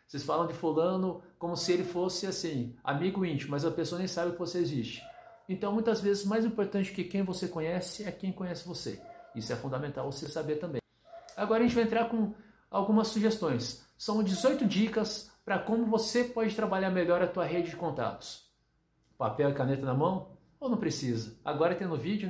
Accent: Brazilian